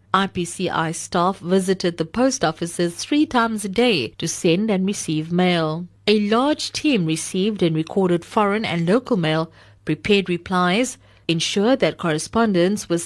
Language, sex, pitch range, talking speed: English, female, 165-230 Hz, 145 wpm